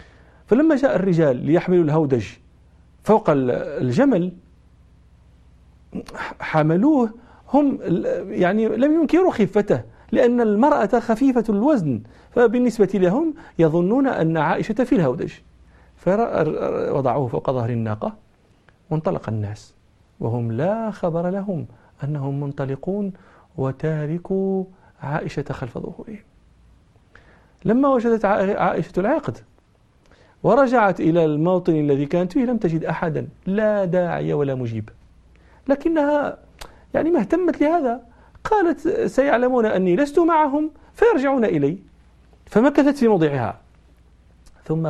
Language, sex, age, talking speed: Arabic, male, 40-59, 100 wpm